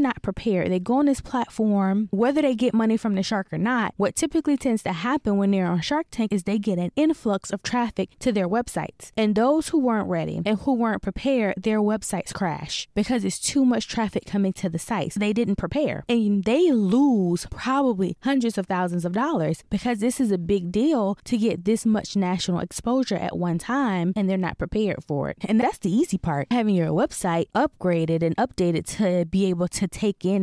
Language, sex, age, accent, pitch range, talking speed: English, female, 20-39, American, 180-245 Hz, 210 wpm